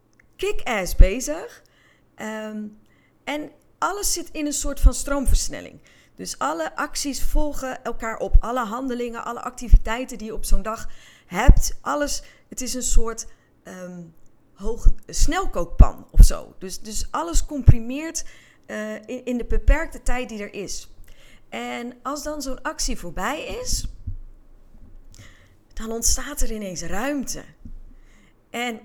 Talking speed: 130 wpm